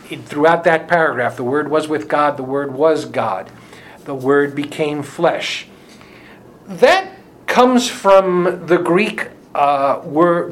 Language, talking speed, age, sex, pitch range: English, 135 wpm, 50-69, male, 145-185 Hz